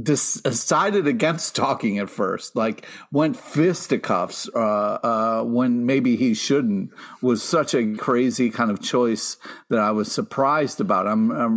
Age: 50-69